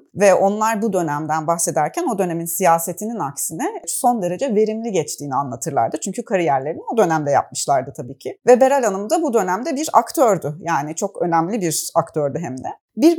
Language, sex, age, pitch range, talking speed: Turkish, female, 30-49, 165-240 Hz, 170 wpm